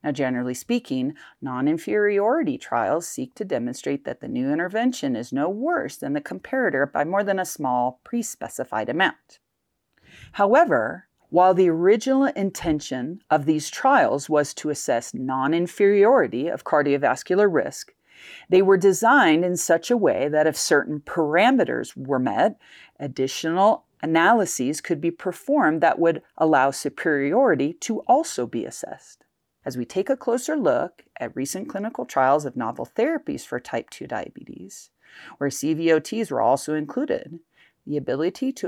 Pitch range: 145-245 Hz